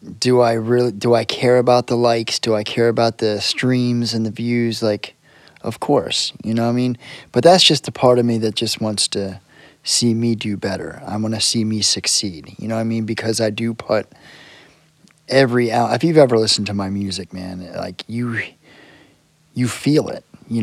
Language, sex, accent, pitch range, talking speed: English, male, American, 105-125 Hz, 205 wpm